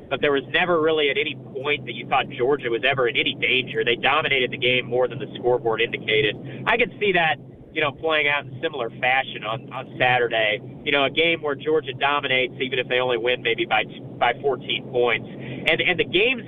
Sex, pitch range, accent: male, 130-170 Hz, American